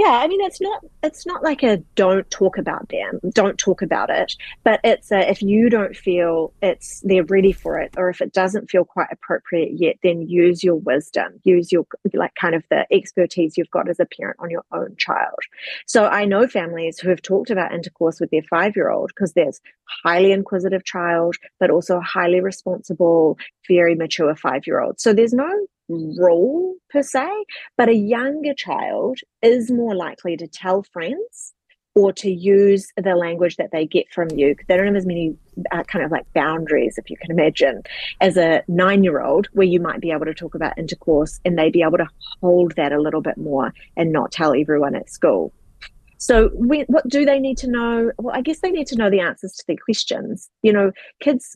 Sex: female